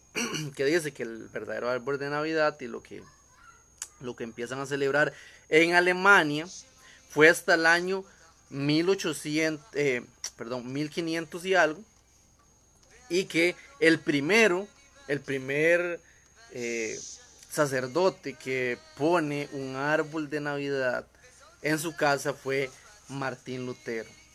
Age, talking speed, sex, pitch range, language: 30-49, 120 wpm, male, 135-160 Hz, Spanish